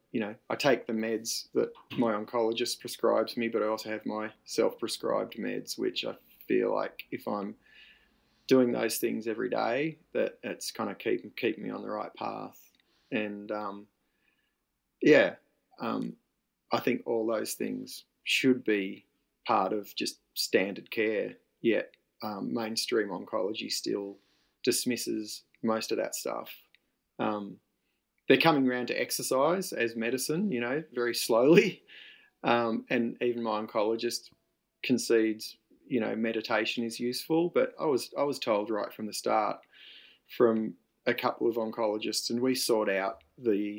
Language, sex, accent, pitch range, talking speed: English, male, Australian, 105-120 Hz, 150 wpm